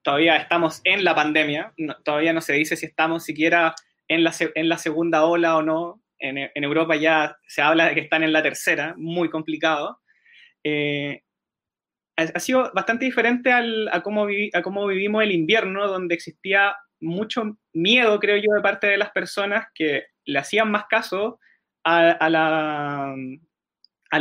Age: 20-39